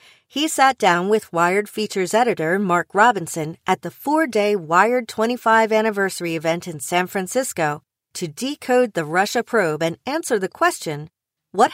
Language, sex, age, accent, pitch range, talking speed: English, female, 40-59, American, 175-235 Hz, 145 wpm